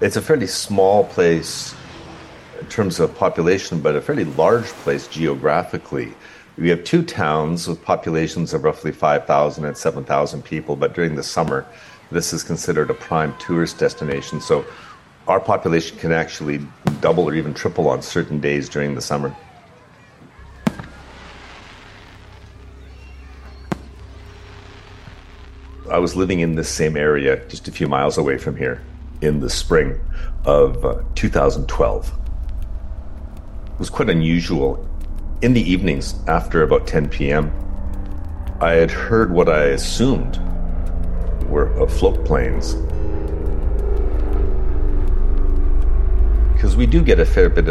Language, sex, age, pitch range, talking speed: English, male, 50-69, 75-90 Hz, 125 wpm